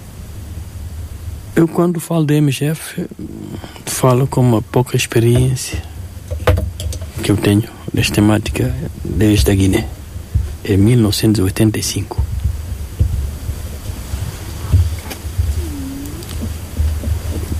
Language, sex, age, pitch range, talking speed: Portuguese, male, 60-79, 90-120 Hz, 70 wpm